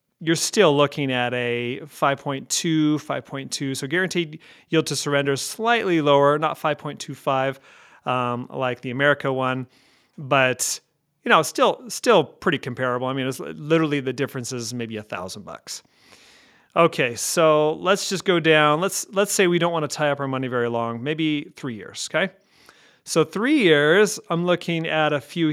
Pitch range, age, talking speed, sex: 130-160 Hz, 30-49, 165 wpm, male